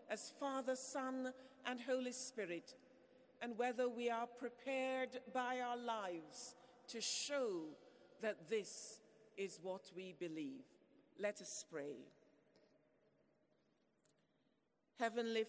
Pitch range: 220-250 Hz